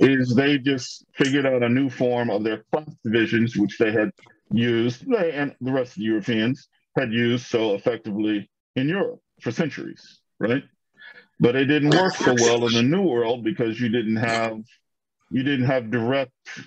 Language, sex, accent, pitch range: English, male, American, 110-140 Hz